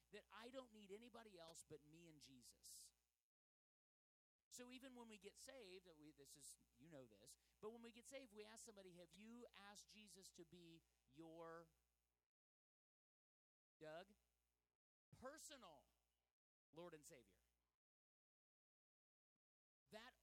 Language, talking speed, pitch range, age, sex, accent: English, 130 wpm, 145-220 Hz, 40-59, male, American